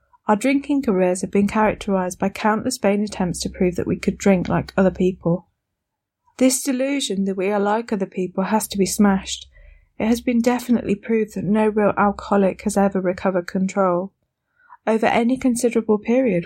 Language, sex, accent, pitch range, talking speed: English, female, British, 185-220 Hz, 175 wpm